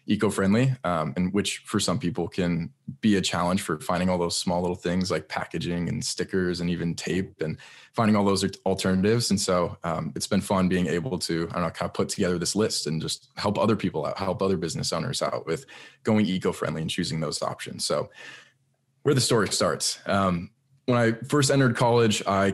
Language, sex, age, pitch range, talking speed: English, male, 20-39, 90-110 Hz, 210 wpm